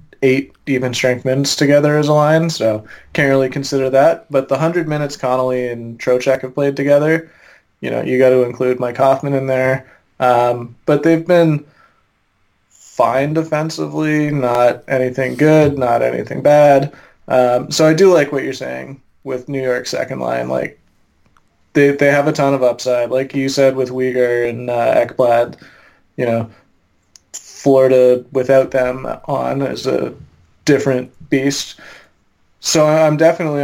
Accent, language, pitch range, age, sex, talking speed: American, English, 125-145 Hz, 20-39, male, 155 wpm